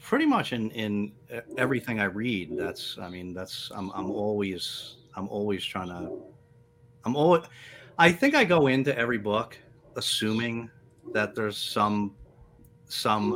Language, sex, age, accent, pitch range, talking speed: English, male, 30-49, American, 100-130 Hz, 145 wpm